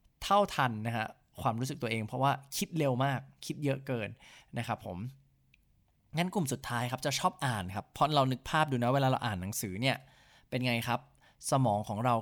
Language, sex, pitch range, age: English, male, 115-150 Hz, 20-39